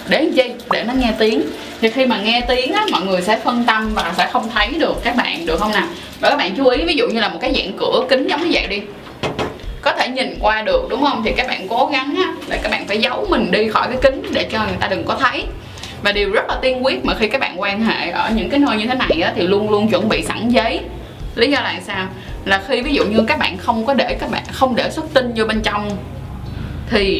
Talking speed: 275 wpm